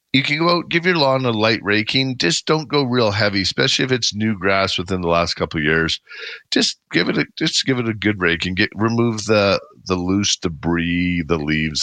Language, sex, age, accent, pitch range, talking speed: English, male, 50-69, American, 85-105 Hz, 220 wpm